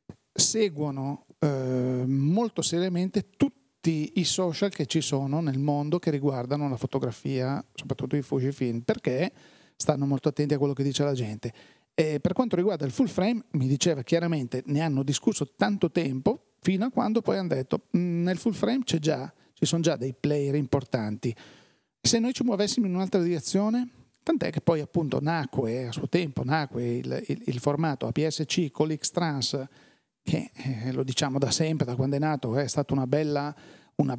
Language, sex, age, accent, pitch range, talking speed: Italian, male, 40-59, native, 135-170 Hz, 170 wpm